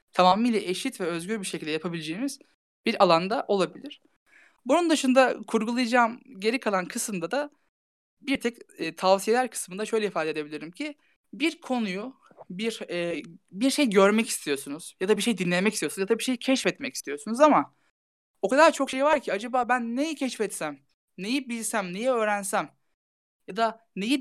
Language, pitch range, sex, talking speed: Turkish, 175-255 Hz, male, 160 wpm